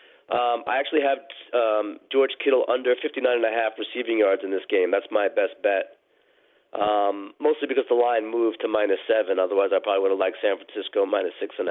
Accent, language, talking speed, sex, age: American, English, 195 wpm, male, 30-49